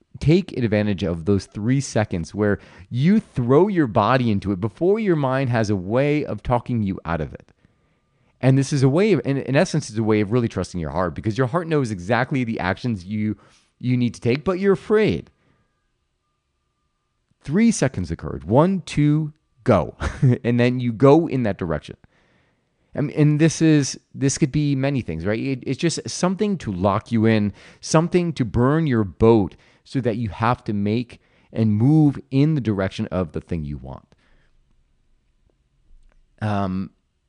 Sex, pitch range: male, 100-150 Hz